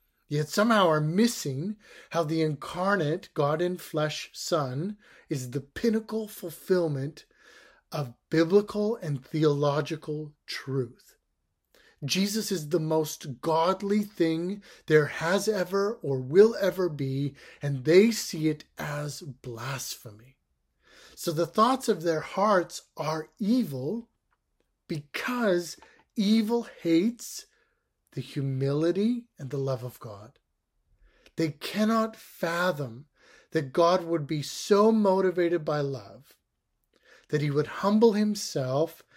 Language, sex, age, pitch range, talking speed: English, male, 30-49, 145-190 Hz, 110 wpm